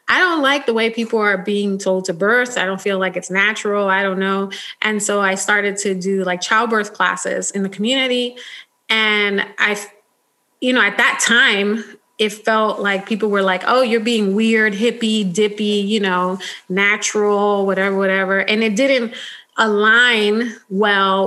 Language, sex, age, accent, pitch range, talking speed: English, female, 30-49, American, 195-230 Hz, 170 wpm